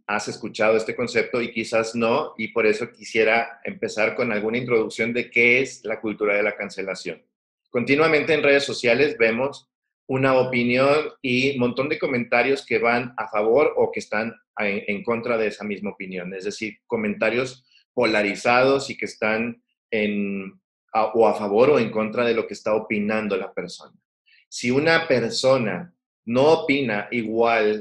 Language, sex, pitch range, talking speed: Spanish, male, 105-125 Hz, 160 wpm